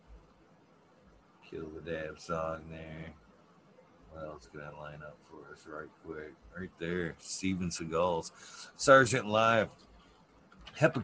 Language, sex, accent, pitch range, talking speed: English, male, American, 105-155 Hz, 120 wpm